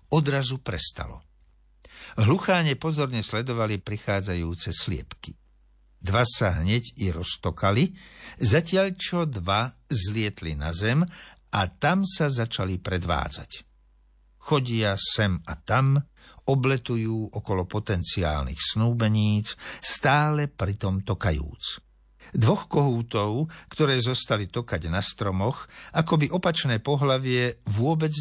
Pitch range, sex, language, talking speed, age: 90-135 Hz, male, Slovak, 100 wpm, 60-79